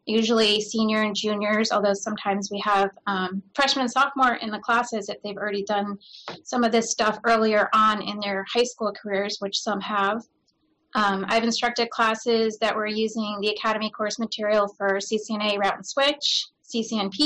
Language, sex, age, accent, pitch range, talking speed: English, female, 30-49, American, 210-235 Hz, 175 wpm